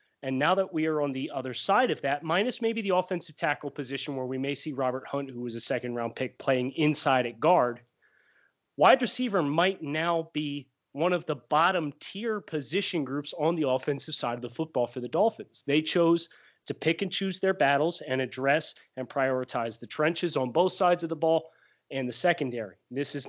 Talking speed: 205 wpm